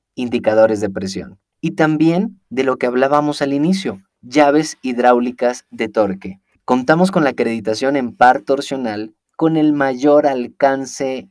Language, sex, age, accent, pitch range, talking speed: Spanish, male, 30-49, Mexican, 115-155 Hz, 140 wpm